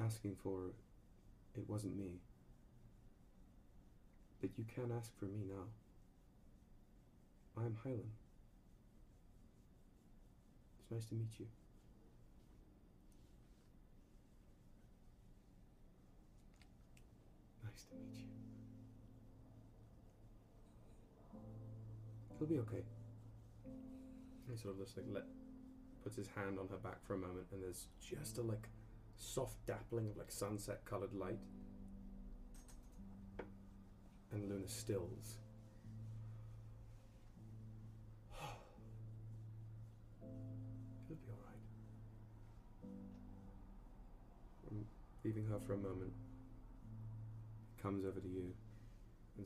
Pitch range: 100-115 Hz